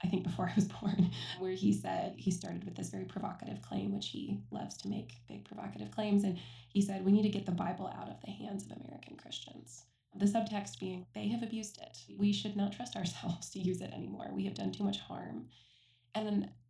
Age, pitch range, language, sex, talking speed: 20-39, 180-215 Hz, English, female, 225 wpm